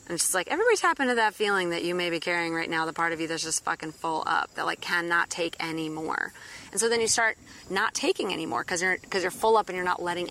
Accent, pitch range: American, 170-220 Hz